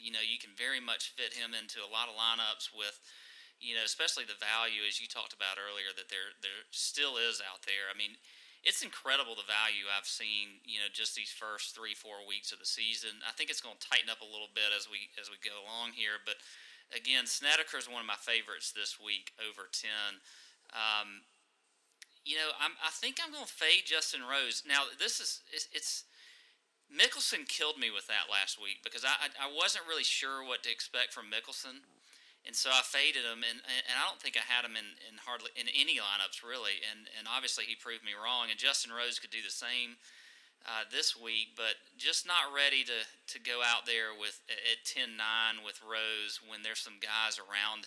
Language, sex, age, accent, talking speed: English, male, 30-49, American, 215 wpm